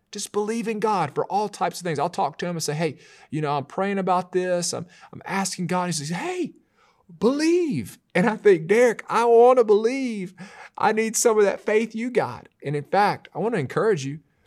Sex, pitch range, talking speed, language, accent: male, 130-190 Hz, 225 wpm, English, American